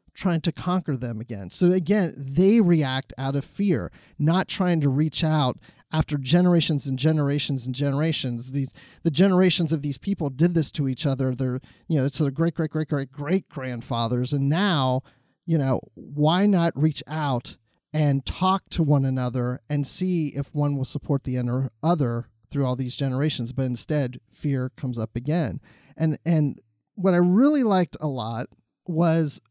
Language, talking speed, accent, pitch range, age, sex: English, 180 wpm, American, 125-160 Hz, 30-49, male